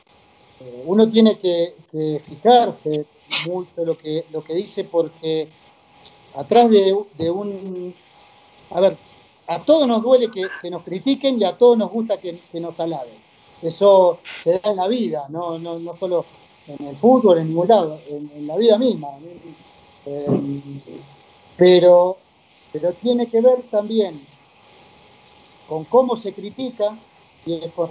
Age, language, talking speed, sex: 40-59, Spanish, 155 wpm, male